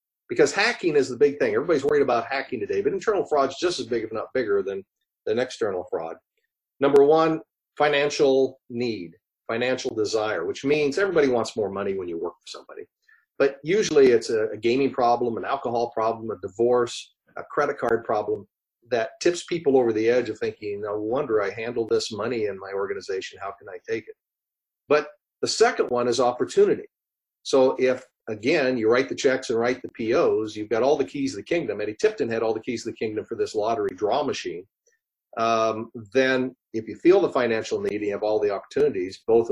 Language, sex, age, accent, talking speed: English, male, 40-59, American, 200 wpm